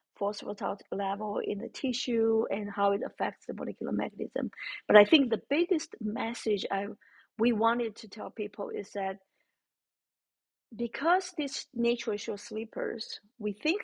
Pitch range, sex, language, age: 210-270 Hz, female, English, 50-69